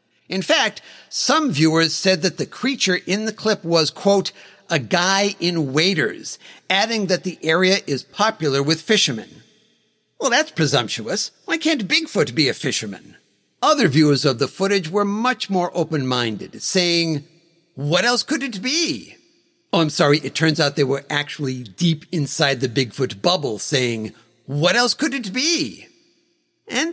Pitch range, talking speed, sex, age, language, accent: 160-235 Hz, 155 wpm, male, 50-69, English, American